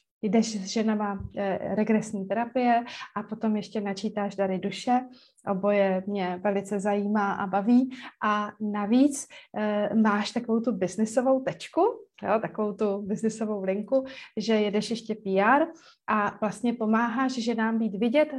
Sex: female